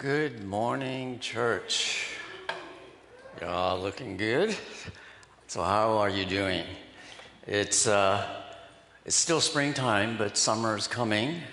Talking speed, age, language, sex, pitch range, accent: 105 wpm, 60-79, English, male, 95-115 Hz, American